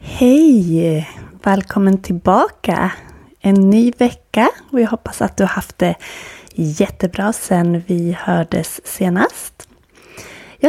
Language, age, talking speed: Swedish, 20-39, 110 wpm